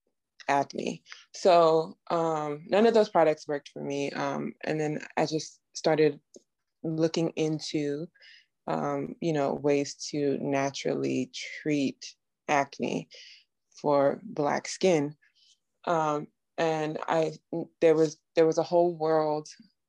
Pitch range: 145-160 Hz